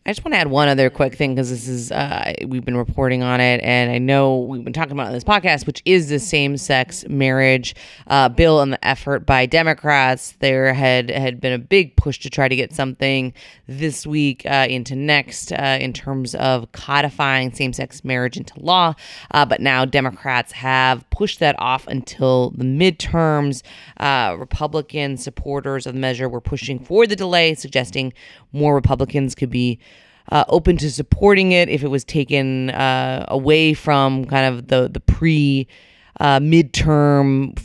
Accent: American